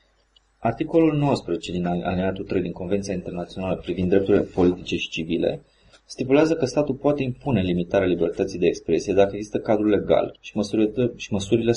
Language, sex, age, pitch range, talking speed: Romanian, male, 20-39, 95-115 Hz, 160 wpm